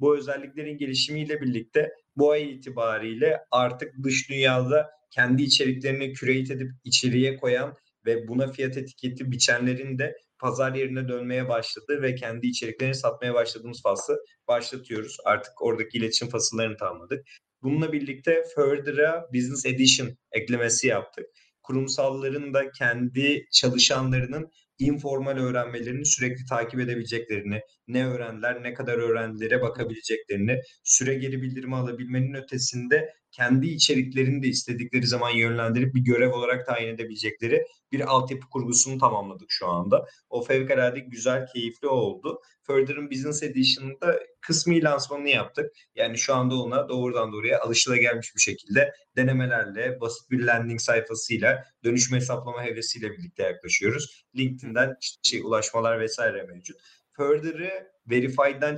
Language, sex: Turkish, male